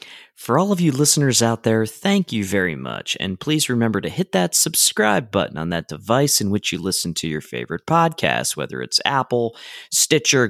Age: 30-49